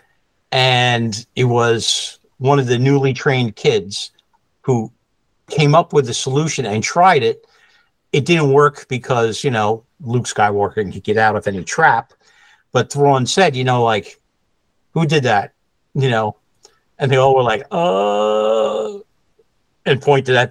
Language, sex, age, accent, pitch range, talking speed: English, male, 60-79, American, 120-160 Hz, 150 wpm